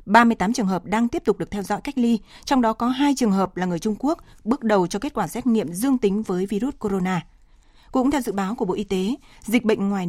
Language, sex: Vietnamese, female